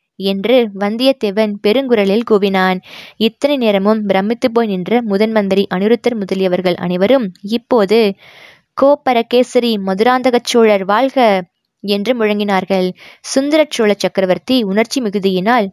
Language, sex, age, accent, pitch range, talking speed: Tamil, female, 20-39, native, 195-230 Hz, 95 wpm